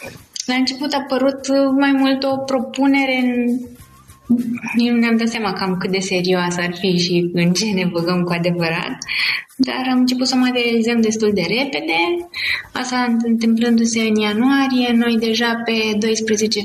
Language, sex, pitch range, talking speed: Romanian, female, 185-250 Hz, 155 wpm